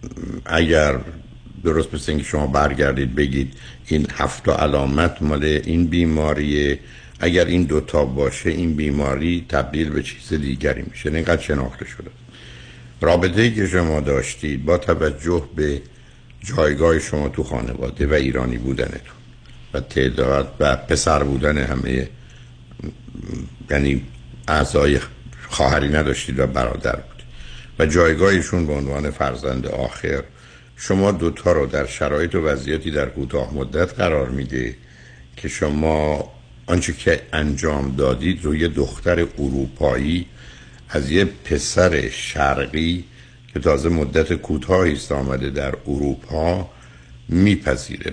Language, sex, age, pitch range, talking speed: Persian, male, 60-79, 65-80 Hz, 120 wpm